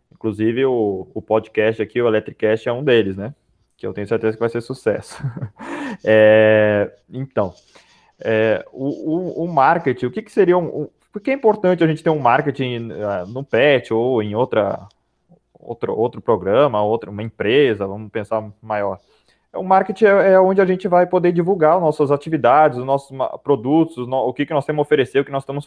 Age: 20-39